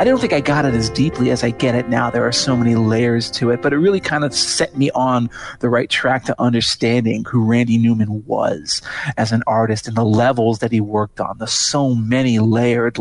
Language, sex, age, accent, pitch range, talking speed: English, male, 40-59, American, 115-140 Hz, 235 wpm